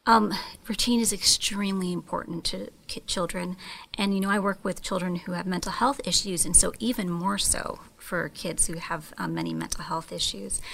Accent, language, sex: American, English, female